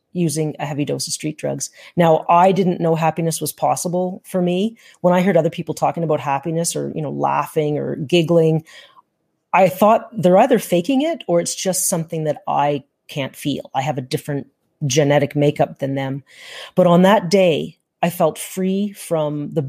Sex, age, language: female, 40-59, English